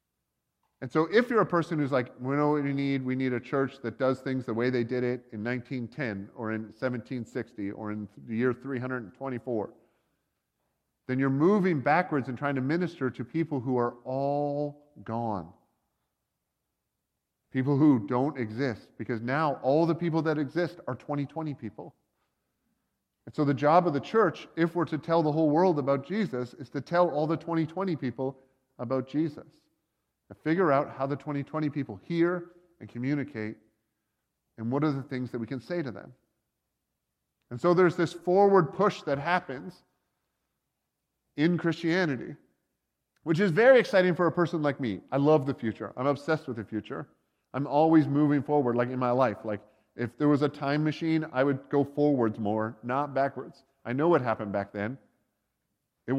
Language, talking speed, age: English, 175 wpm, 40-59